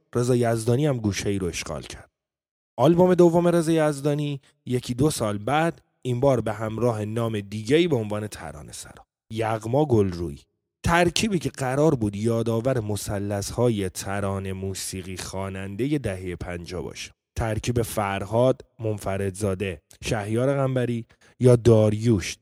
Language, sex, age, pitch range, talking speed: Persian, male, 20-39, 105-140 Hz, 125 wpm